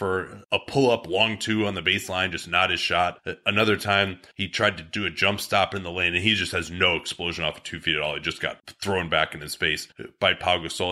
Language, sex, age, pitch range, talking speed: English, male, 30-49, 95-120 Hz, 260 wpm